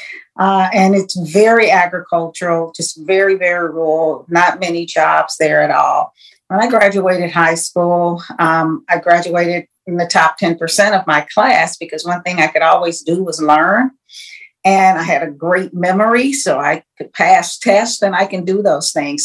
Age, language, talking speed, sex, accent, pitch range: 50-69, English, 175 wpm, female, American, 155-190 Hz